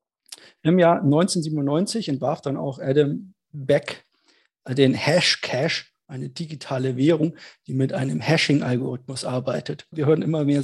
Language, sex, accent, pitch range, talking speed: German, male, German, 135-155 Hz, 125 wpm